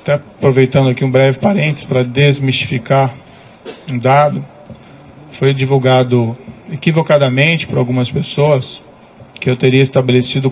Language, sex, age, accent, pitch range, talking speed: English, male, 40-59, Brazilian, 130-155 Hz, 110 wpm